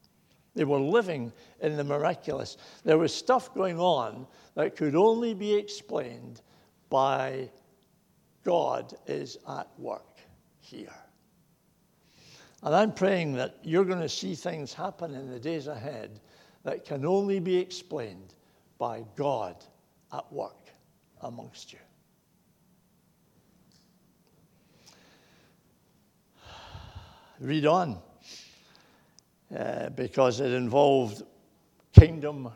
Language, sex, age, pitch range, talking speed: English, male, 60-79, 135-195 Hz, 100 wpm